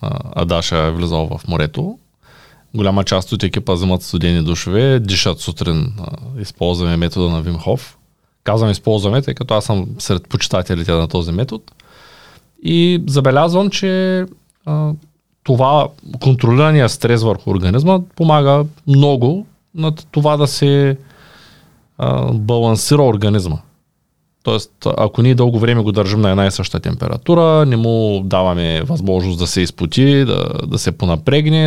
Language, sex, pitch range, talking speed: Bulgarian, male, 95-145 Hz, 130 wpm